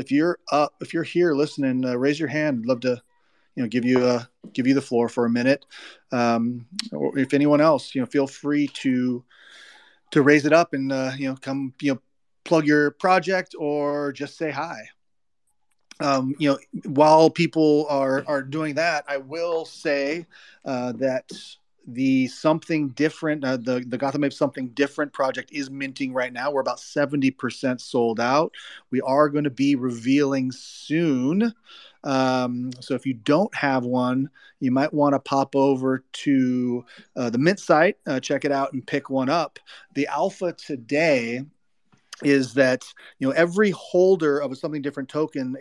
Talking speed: 180 wpm